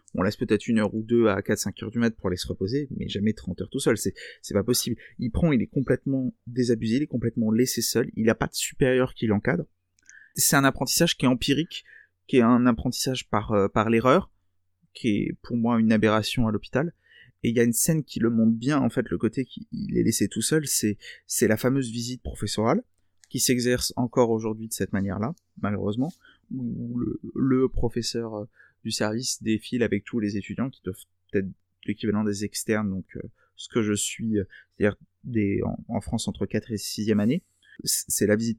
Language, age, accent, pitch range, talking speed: French, 30-49, French, 105-125 Hz, 210 wpm